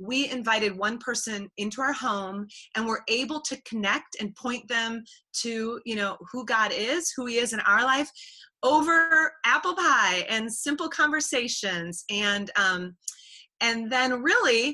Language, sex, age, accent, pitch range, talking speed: English, female, 30-49, American, 200-255 Hz, 155 wpm